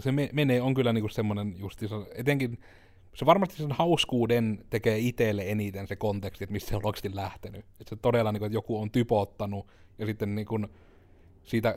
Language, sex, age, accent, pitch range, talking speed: Finnish, male, 30-49, native, 100-125 Hz, 170 wpm